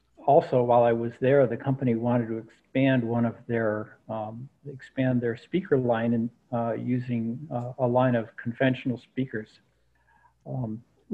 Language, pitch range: English, 115-130 Hz